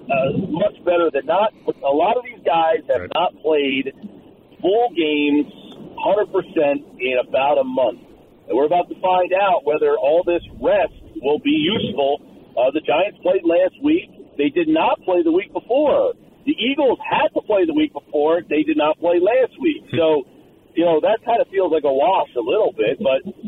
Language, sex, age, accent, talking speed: English, male, 40-59, American, 190 wpm